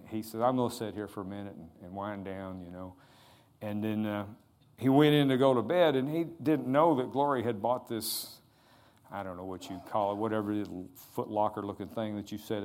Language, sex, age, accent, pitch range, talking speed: English, male, 50-69, American, 105-130 Hz, 240 wpm